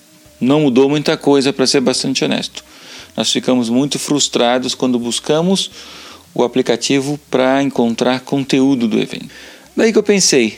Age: 40-59